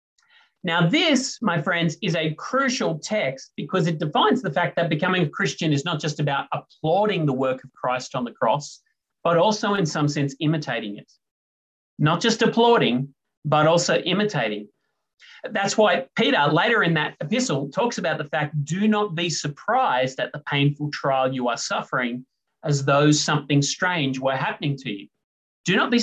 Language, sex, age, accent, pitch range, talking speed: English, male, 30-49, Australian, 145-210 Hz, 175 wpm